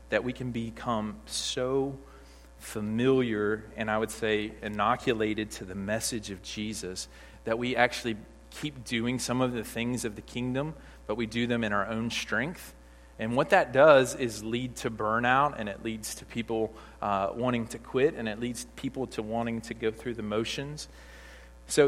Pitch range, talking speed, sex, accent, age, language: 80-120 Hz, 180 wpm, male, American, 40-59, English